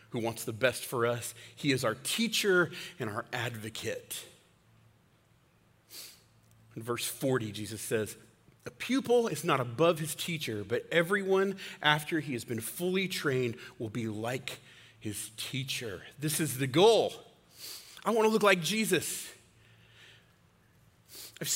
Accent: American